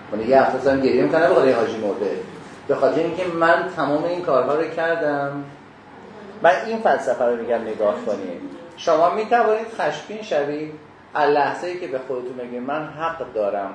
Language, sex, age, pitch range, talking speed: Persian, male, 30-49, 140-210 Hz, 160 wpm